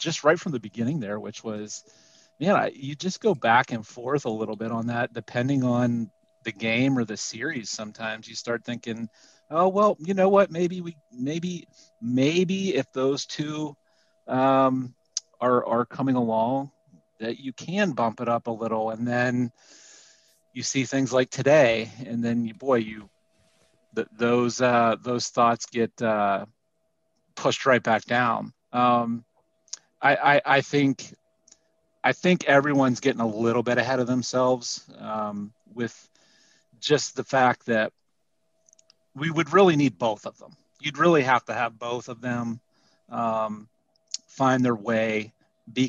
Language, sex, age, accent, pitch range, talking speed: English, male, 40-59, American, 115-135 Hz, 155 wpm